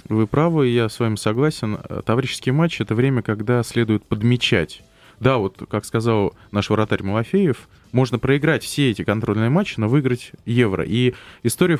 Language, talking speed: Russian, 160 wpm